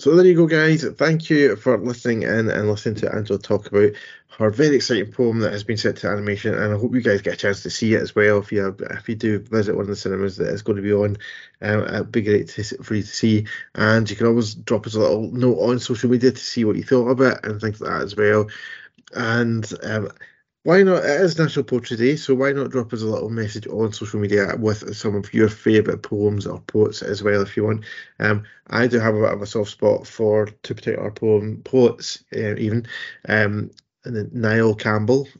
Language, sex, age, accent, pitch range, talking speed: English, male, 20-39, British, 105-120 Hz, 250 wpm